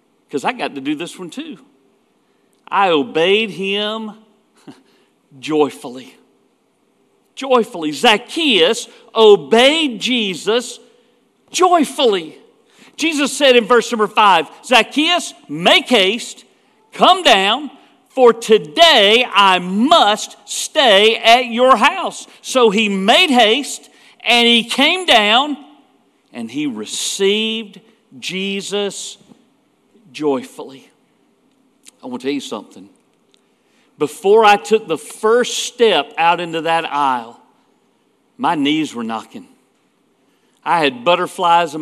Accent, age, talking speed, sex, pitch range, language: American, 50-69, 105 wpm, male, 190-250 Hz, English